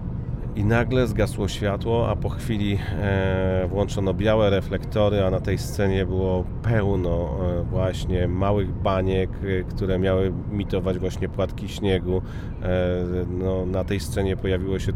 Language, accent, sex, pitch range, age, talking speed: Polish, native, male, 95-115 Hz, 30-49, 125 wpm